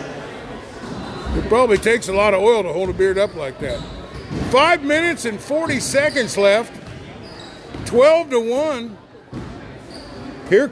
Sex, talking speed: male, 135 wpm